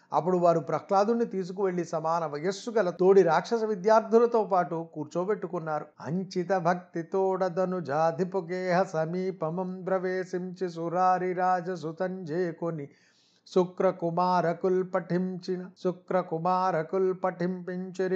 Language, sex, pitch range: Telugu, male, 170-190 Hz